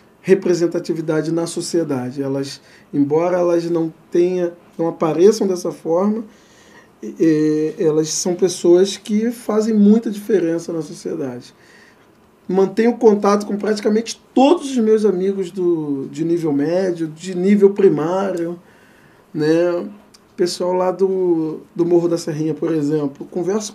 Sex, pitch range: male, 170-205 Hz